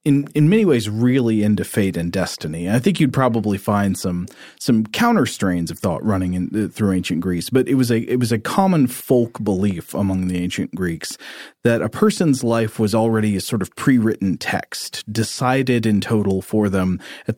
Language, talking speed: English, 200 wpm